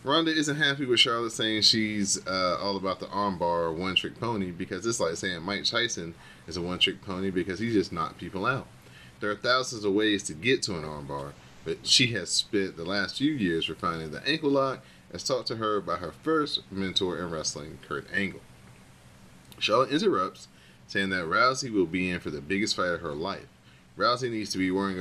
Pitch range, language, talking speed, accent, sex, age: 80-105 Hz, English, 200 wpm, American, male, 30-49